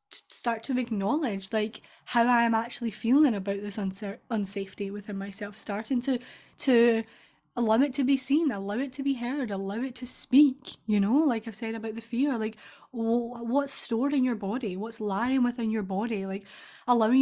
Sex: female